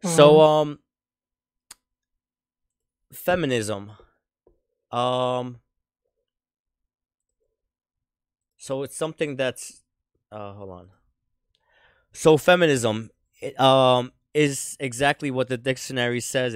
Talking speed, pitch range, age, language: 75 wpm, 105-130 Hz, 20-39, English